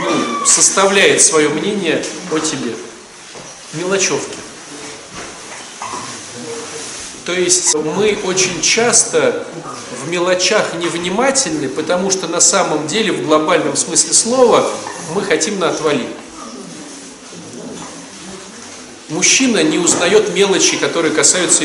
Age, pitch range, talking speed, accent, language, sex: 40-59, 170-245 Hz, 90 wpm, native, Russian, male